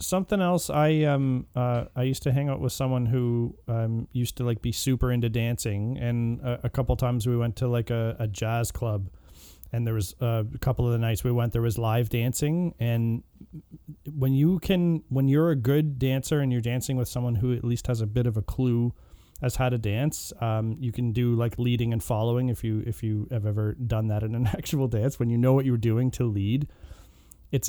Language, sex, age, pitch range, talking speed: English, male, 30-49, 115-135 Hz, 230 wpm